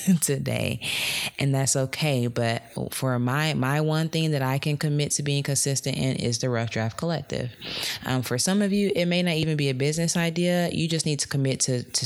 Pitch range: 110-135 Hz